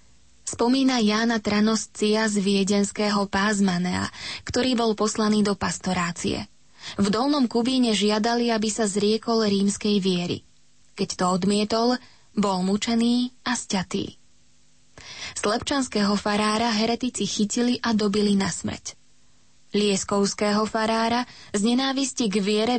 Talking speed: 110 wpm